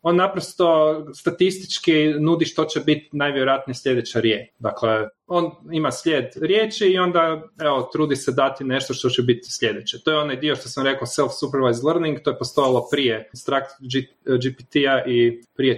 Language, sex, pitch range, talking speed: Croatian, male, 125-170 Hz, 165 wpm